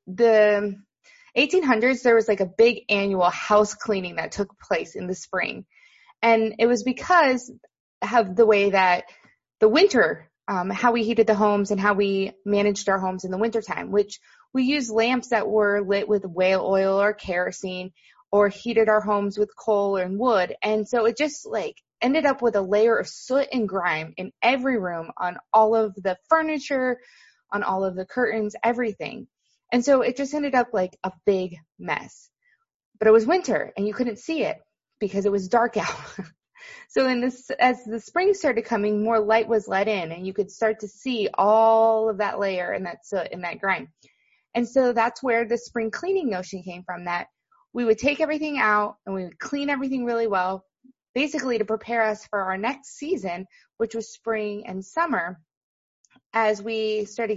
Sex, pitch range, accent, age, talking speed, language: female, 200-245 Hz, American, 20-39, 190 wpm, English